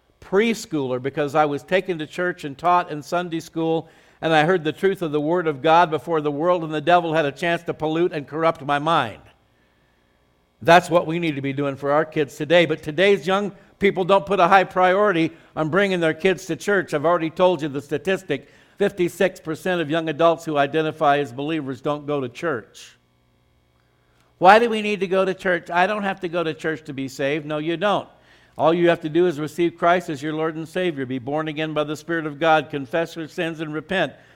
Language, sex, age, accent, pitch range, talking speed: English, male, 60-79, American, 145-180 Hz, 225 wpm